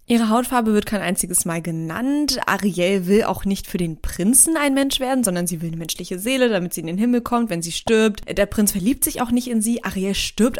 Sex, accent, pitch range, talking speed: female, German, 185-240 Hz, 240 wpm